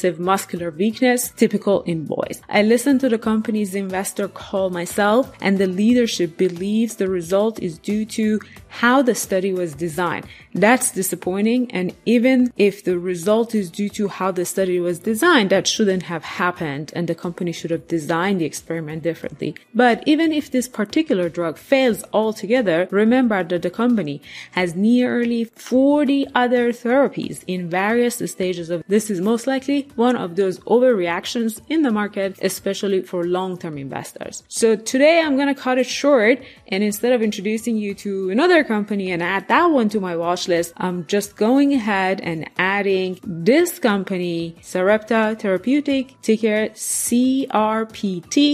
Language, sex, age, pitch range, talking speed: English, female, 20-39, 180-240 Hz, 155 wpm